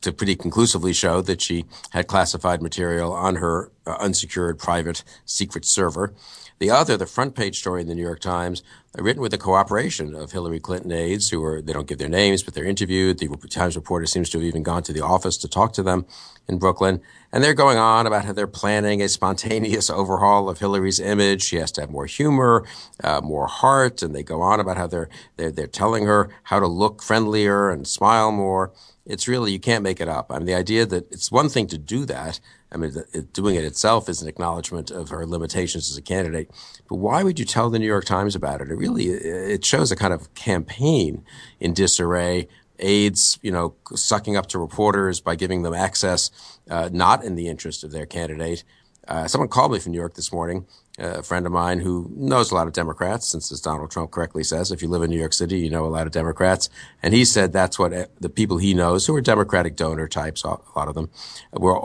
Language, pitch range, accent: English, 85-100 Hz, American